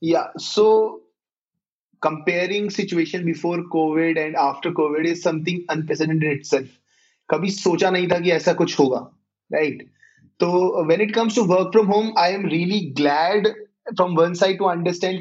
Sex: male